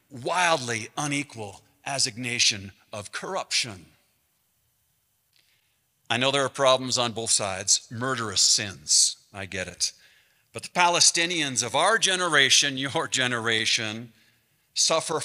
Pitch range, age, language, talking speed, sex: 125-190 Hz, 50-69, English, 105 wpm, male